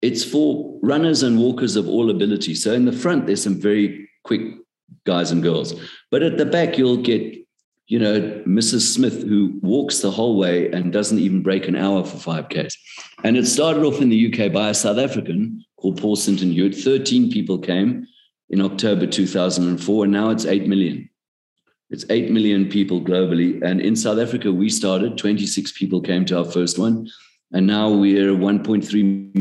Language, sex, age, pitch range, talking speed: English, male, 50-69, 90-110 Hz, 185 wpm